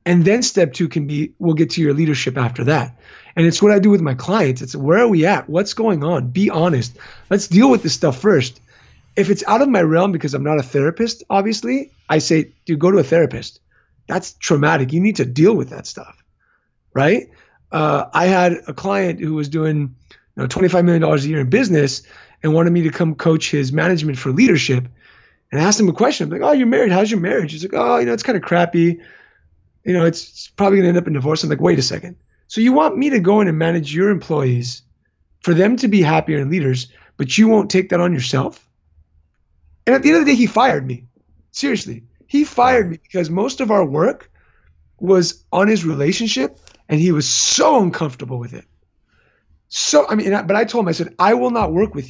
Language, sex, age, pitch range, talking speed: English, male, 30-49, 135-195 Hz, 230 wpm